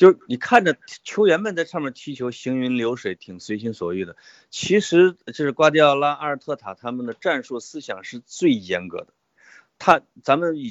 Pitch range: 125-180 Hz